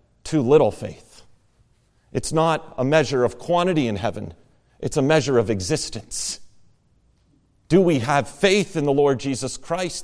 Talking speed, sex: 150 wpm, male